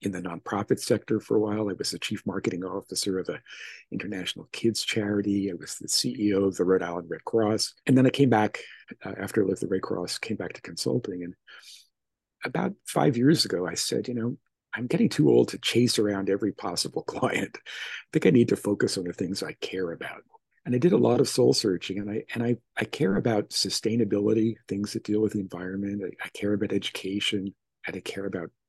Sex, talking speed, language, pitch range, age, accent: male, 220 wpm, English, 95-115 Hz, 50-69, American